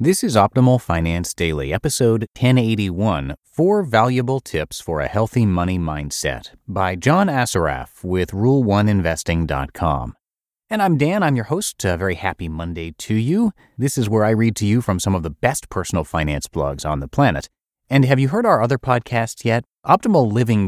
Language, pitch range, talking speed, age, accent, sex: English, 90-130 Hz, 175 wpm, 30-49, American, male